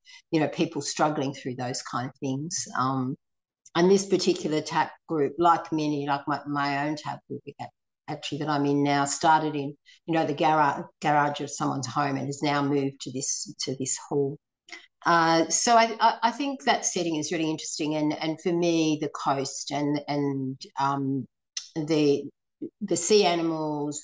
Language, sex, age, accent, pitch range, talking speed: English, female, 60-79, Australian, 145-170 Hz, 175 wpm